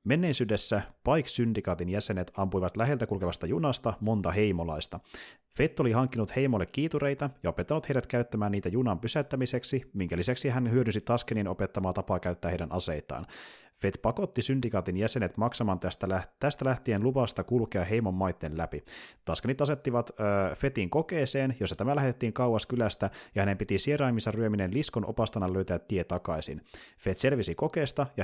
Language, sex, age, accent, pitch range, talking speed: Finnish, male, 30-49, native, 95-130 Hz, 140 wpm